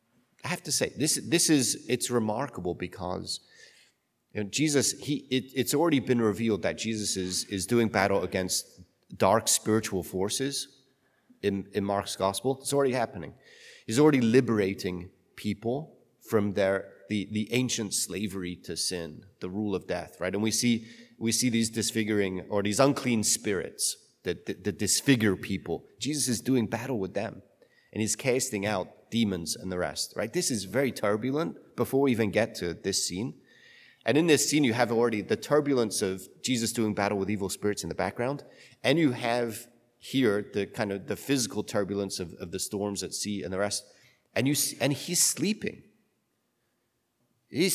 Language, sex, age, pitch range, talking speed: English, male, 30-49, 100-130 Hz, 175 wpm